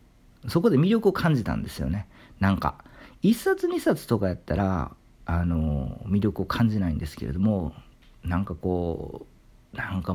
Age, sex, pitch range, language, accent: 40-59, male, 85-120 Hz, Japanese, native